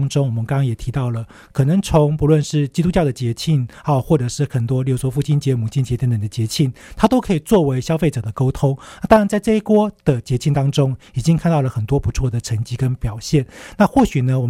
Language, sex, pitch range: Chinese, male, 120-155 Hz